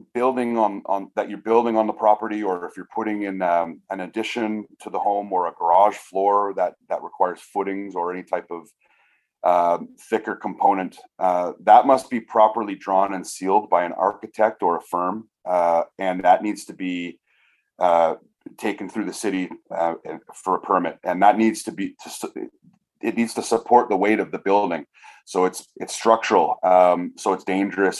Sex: male